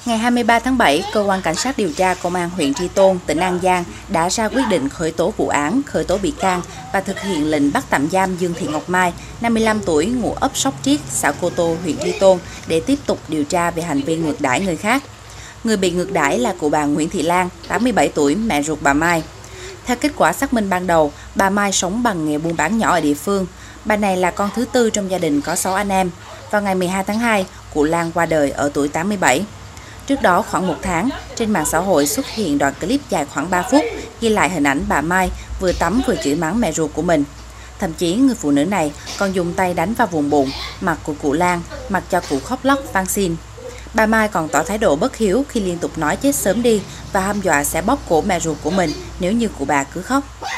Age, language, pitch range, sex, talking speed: 20-39, Vietnamese, 155-215 Hz, female, 250 wpm